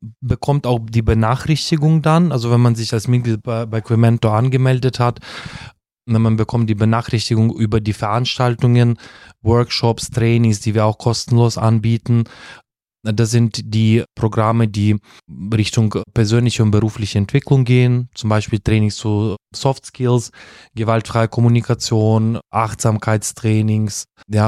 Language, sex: German, male